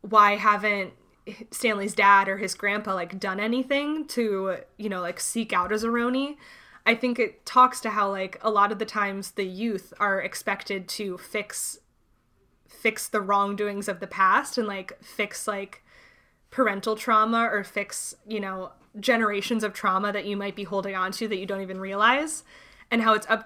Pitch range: 195-220 Hz